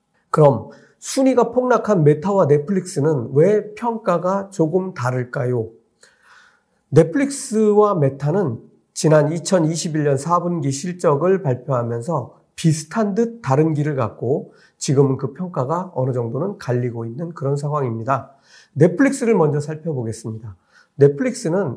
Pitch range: 135-210 Hz